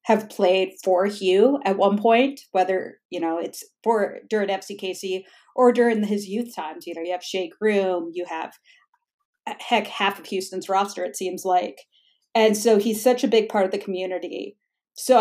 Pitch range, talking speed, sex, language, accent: 190-235 Hz, 180 wpm, female, English, American